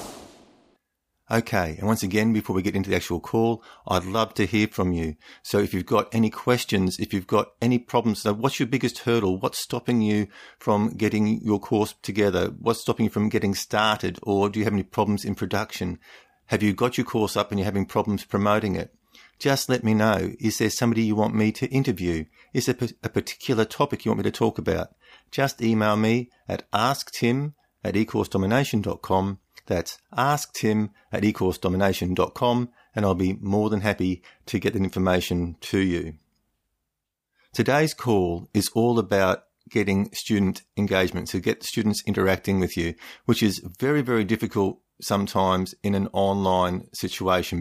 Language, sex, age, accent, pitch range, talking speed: English, male, 50-69, Australian, 95-115 Hz, 175 wpm